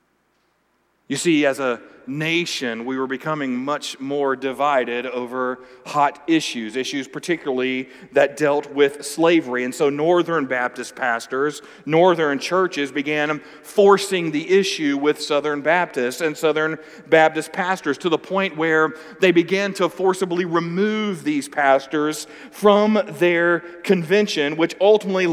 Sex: male